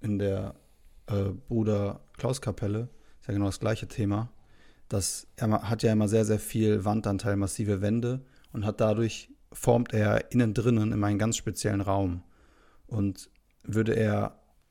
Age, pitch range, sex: 30-49, 100-115 Hz, male